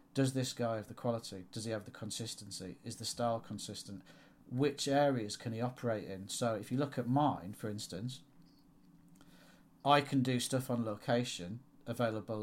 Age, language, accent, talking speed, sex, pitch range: 40-59, English, British, 175 wpm, male, 110-135 Hz